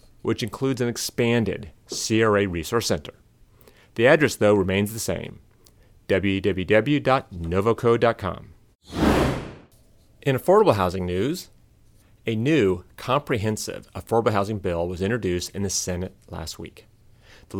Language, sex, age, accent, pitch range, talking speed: English, male, 30-49, American, 95-115 Hz, 110 wpm